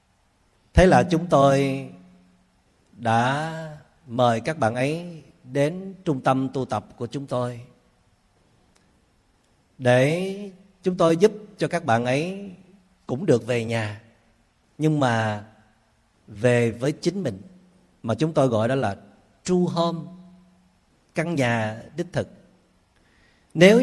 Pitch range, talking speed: 110-165 Hz, 120 wpm